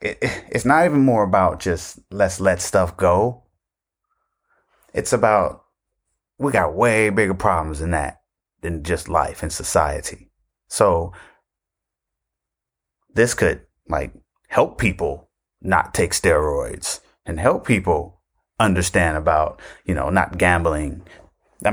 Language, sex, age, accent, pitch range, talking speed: English, male, 30-49, American, 85-105 Hz, 120 wpm